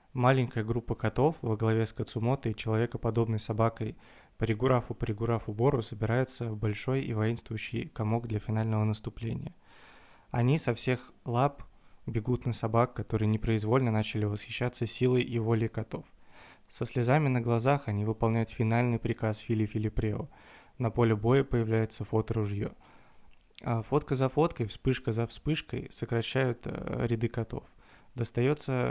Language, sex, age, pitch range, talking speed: Russian, male, 20-39, 110-125 Hz, 125 wpm